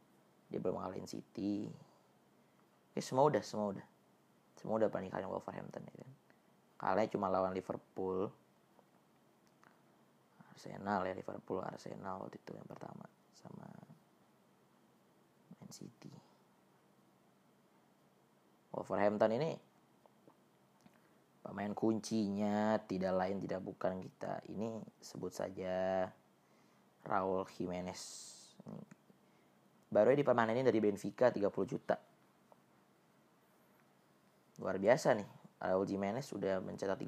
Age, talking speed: 20-39, 95 wpm